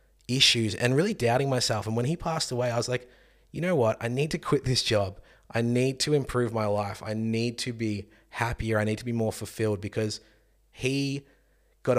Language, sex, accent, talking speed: English, male, Australian, 210 wpm